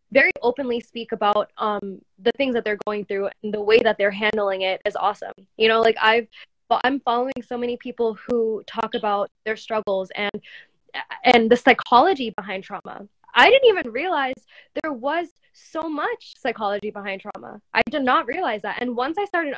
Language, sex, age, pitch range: English, female, 10-29, 215-275 Hz